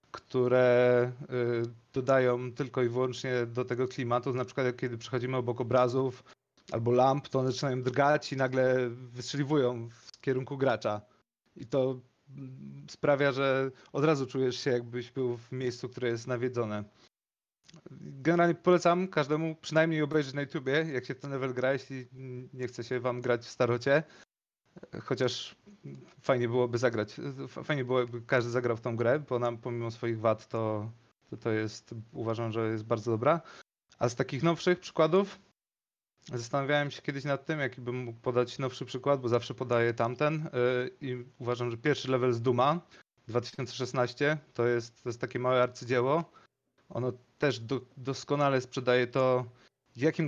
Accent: native